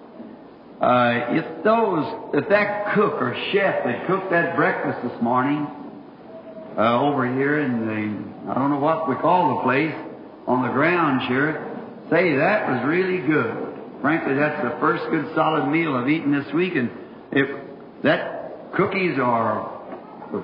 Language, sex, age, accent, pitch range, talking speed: English, male, 60-79, American, 140-165 Hz, 155 wpm